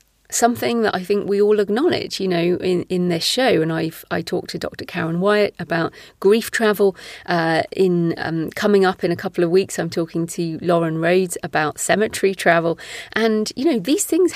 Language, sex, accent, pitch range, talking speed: English, female, British, 165-225 Hz, 195 wpm